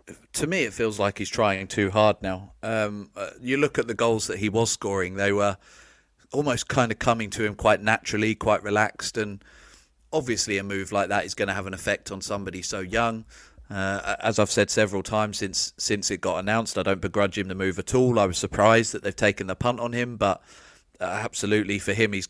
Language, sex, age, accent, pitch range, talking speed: English, male, 30-49, British, 95-110 Hz, 225 wpm